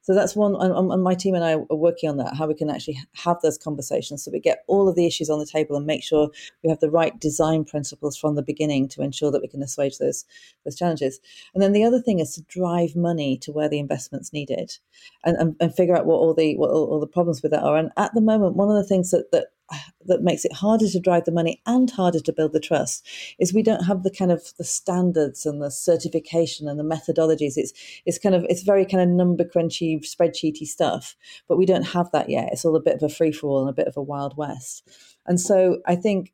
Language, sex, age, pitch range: English, female, 40-59, 150-180 Hz